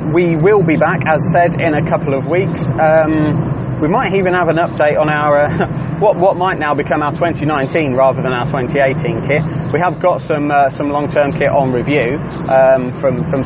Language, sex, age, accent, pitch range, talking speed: English, male, 20-39, British, 145-170 Hz, 210 wpm